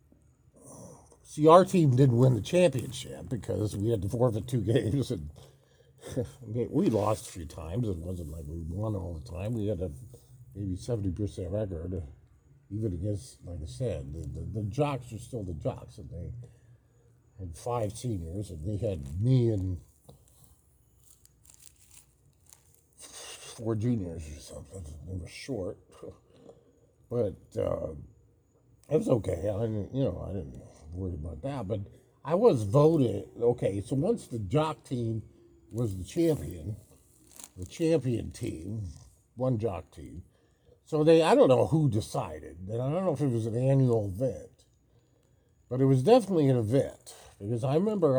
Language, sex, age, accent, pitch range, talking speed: English, male, 50-69, American, 95-130 Hz, 155 wpm